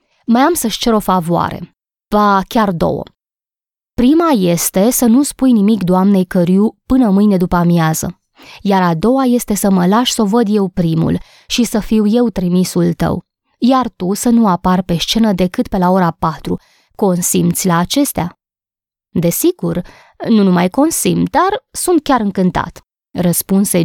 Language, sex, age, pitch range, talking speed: Romanian, female, 20-39, 175-230 Hz, 160 wpm